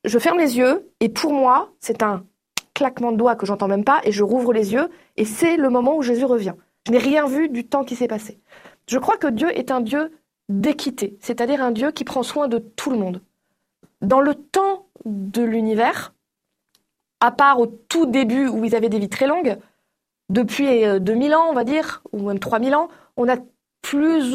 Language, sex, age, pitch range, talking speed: French, female, 20-39, 230-290 Hz, 210 wpm